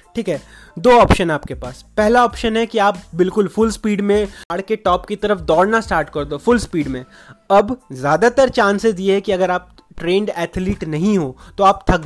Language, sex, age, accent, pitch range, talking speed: Hindi, male, 20-39, native, 175-205 Hz, 210 wpm